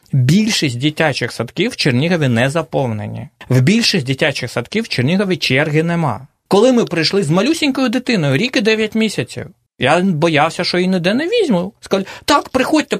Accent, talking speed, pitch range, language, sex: native, 155 wpm, 125-185 Hz, Russian, male